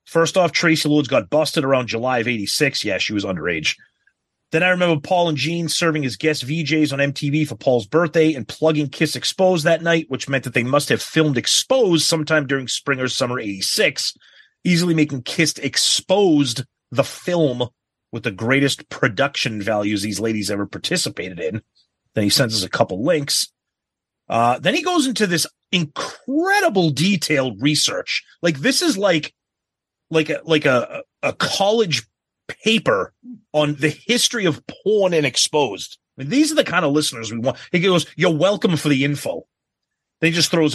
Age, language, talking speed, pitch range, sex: 30-49, English, 175 wpm, 130-175 Hz, male